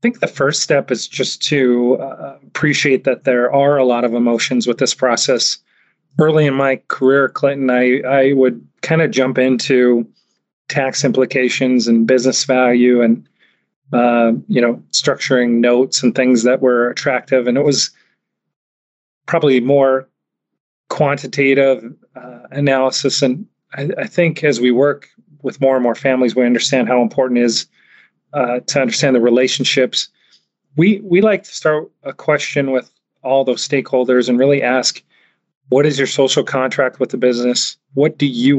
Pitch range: 125-140 Hz